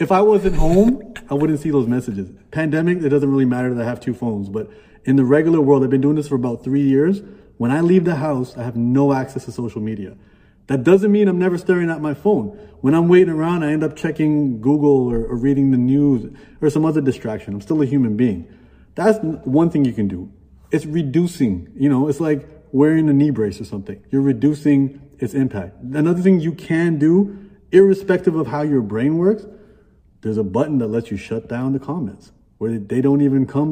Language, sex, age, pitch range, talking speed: English, male, 30-49, 125-160 Hz, 220 wpm